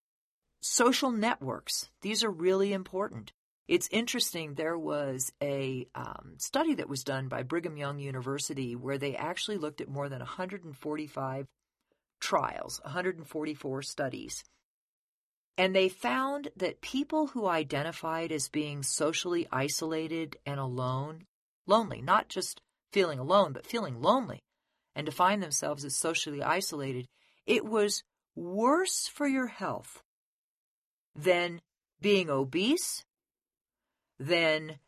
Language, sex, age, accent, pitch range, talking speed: English, female, 40-59, American, 150-225 Hz, 115 wpm